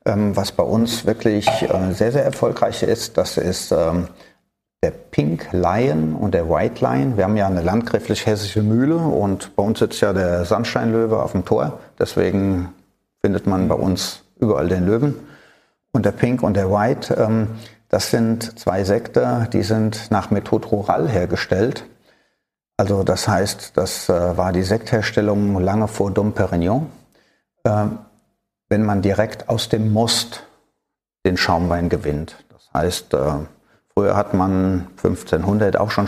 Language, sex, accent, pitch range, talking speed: German, male, German, 95-110 Hz, 145 wpm